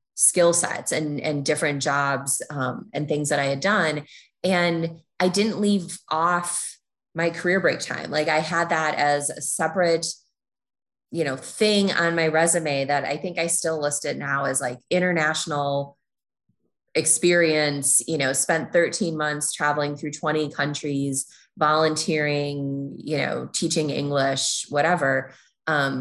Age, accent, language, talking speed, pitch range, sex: 20-39, American, English, 145 wpm, 145-175 Hz, female